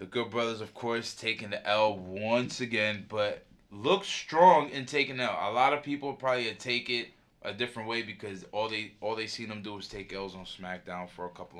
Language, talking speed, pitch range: English, 215 wpm, 100-125 Hz